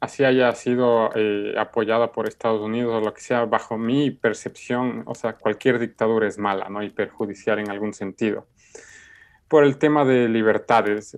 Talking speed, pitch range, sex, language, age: 170 wpm, 110-130 Hz, male, Spanish, 30-49